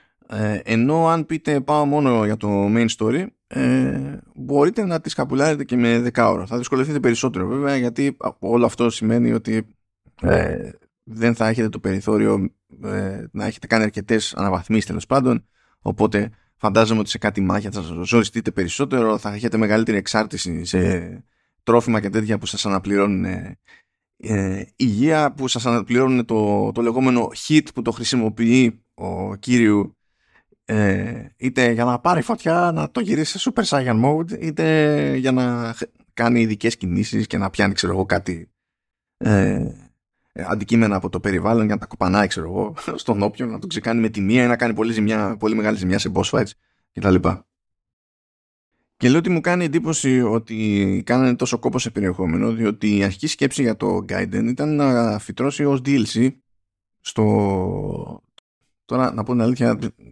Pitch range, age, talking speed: 100-125 Hz, 20-39, 160 wpm